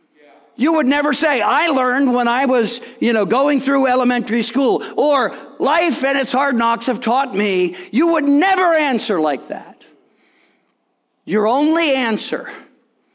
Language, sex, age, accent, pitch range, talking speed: English, male, 50-69, American, 195-290 Hz, 150 wpm